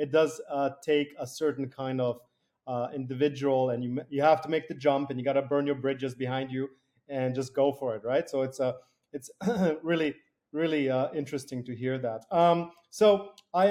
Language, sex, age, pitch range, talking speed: English, male, 30-49, 130-155 Hz, 205 wpm